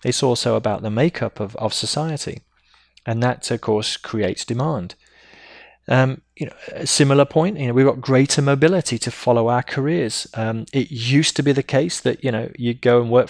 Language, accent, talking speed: English, British, 200 wpm